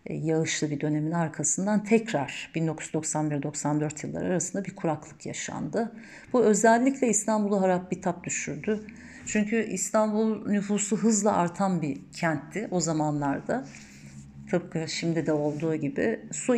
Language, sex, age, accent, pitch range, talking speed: Turkish, female, 50-69, native, 160-210 Hz, 120 wpm